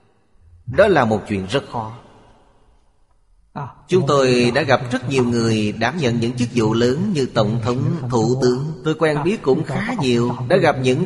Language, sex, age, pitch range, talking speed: Vietnamese, male, 30-49, 110-150 Hz, 180 wpm